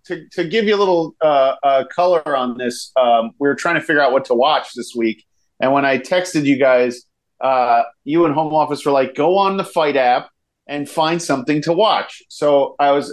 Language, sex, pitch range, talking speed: English, male, 135-175 Hz, 225 wpm